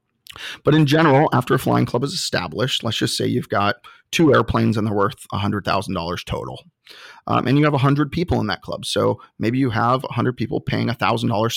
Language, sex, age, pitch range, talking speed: English, male, 30-49, 105-130 Hz, 195 wpm